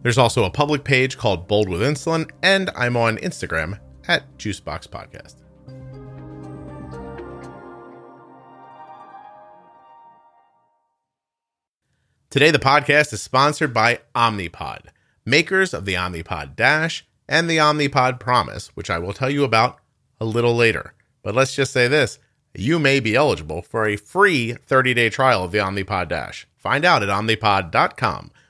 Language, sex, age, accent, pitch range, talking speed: English, male, 30-49, American, 95-135 Hz, 135 wpm